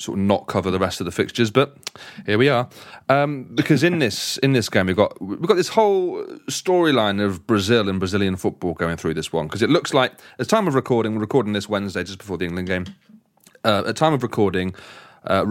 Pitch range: 95-130 Hz